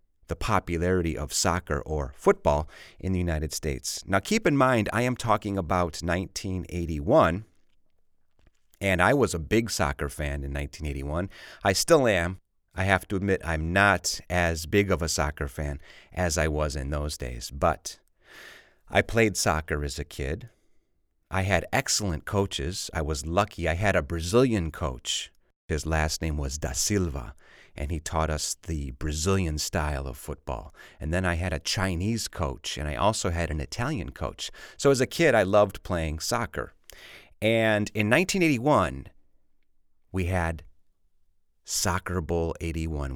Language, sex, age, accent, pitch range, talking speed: English, male, 30-49, American, 75-95 Hz, 155 wpm